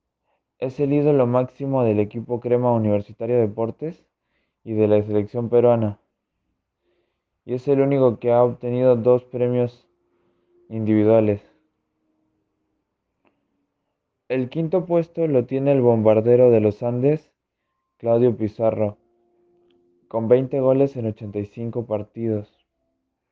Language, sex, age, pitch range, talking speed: Spanish, male, 20-39, 110-130 Hz, 110 wpm